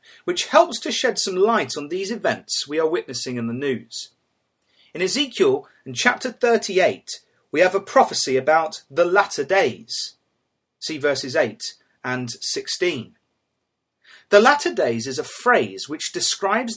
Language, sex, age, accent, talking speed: English, male, 30-49, British, 145 wpm